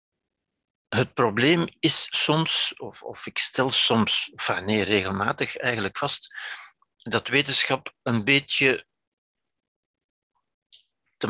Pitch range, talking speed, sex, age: 110-130 Hz, 95 wpm, male, 60-79